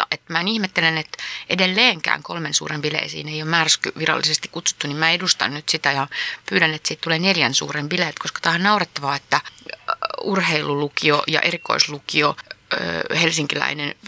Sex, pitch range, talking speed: female, 155-195 Hz, 160 wpm